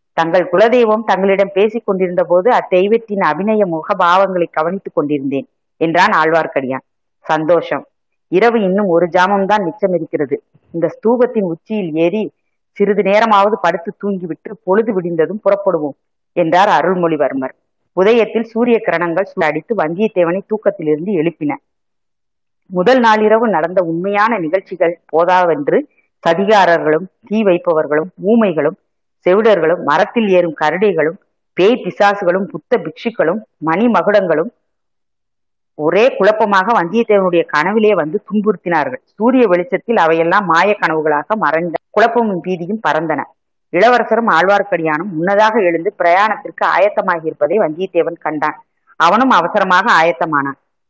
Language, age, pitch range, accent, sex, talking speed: Tamil, 30-49, 165-215 Hz, native, female, 105 wpm